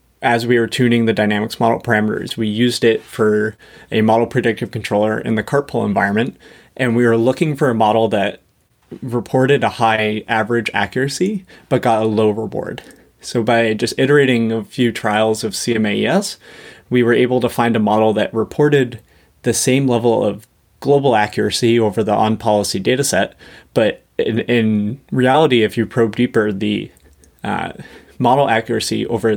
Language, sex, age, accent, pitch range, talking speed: English, male, 30-49, American, 110-125 Hz, 160 wpm